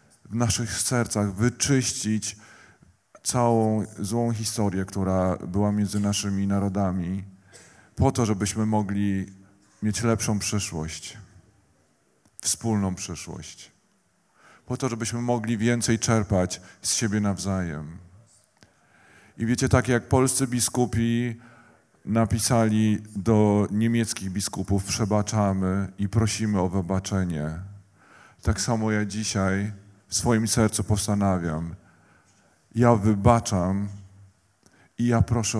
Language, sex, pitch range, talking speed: Polish, male, 95-115 Hz, 100 wpm